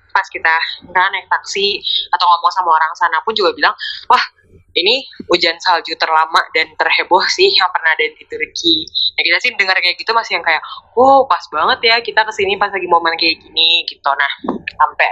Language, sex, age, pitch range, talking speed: Indonesian, female, 20-39, 165-260 Hz, 190 wpm